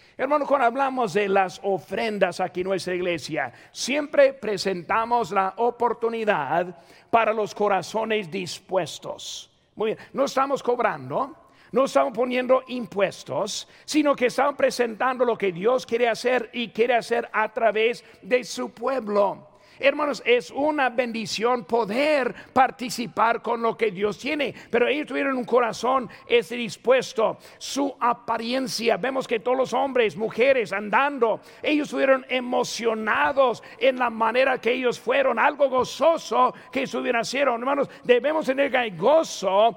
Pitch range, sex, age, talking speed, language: 215-265 Hz, male, 50-69, 140 wpm, Spanish